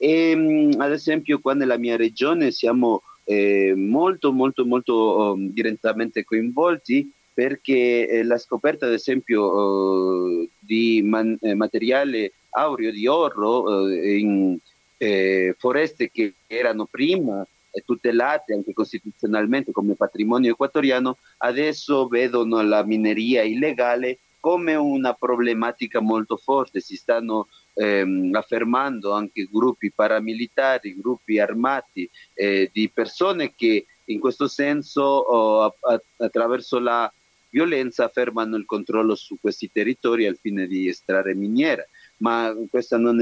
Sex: male